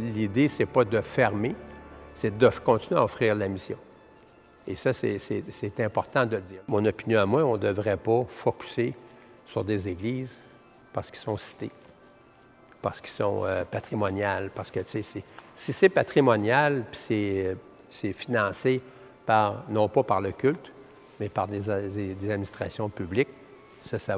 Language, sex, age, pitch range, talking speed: French, male, 50-69, 95-115 Hz, 170 wpm